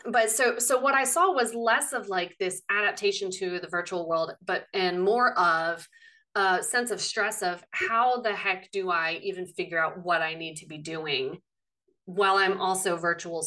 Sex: female